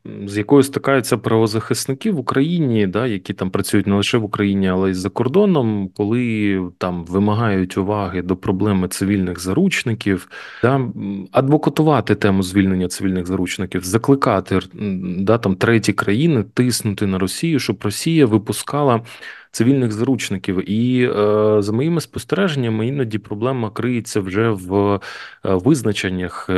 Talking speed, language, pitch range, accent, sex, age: 125 wpm, Ukrainian, 100-130 Hz, native, male, 30-49